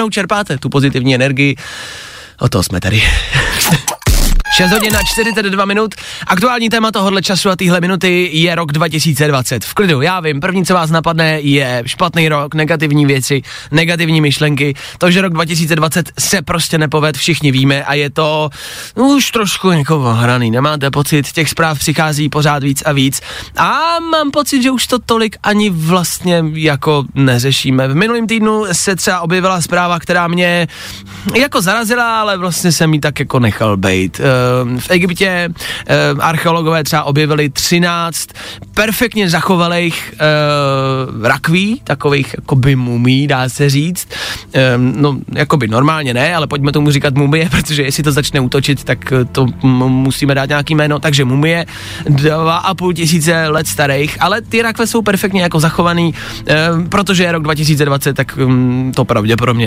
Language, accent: Czech, native